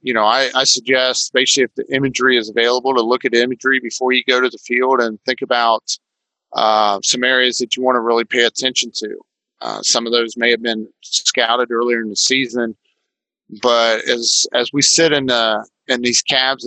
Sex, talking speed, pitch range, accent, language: male, 205 wpm, 115-130 Hz, American, English